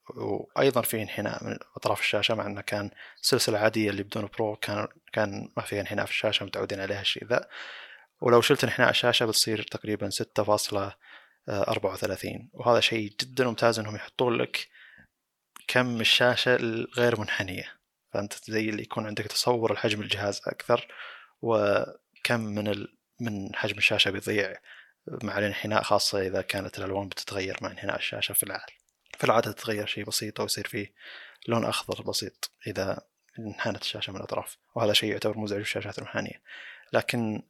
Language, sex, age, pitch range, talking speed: Arabic, male, 20-39, 105-115 Hz, 145 wpm